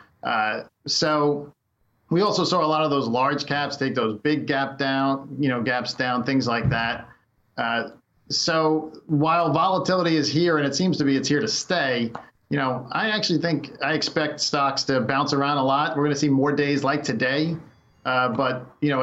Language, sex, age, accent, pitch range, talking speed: English, male, 40-59, American, 130-150 Hz, 195 wpm